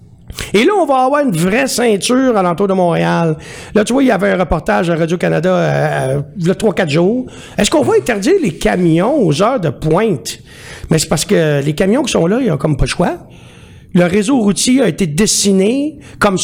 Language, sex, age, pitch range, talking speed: French, male, 60-79, 165-225 Hz, 215 wpm